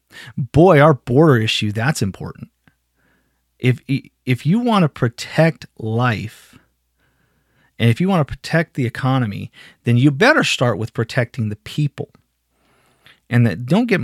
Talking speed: 140 wpm